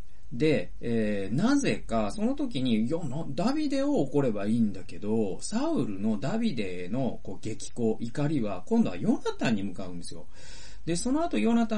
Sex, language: male, Japanese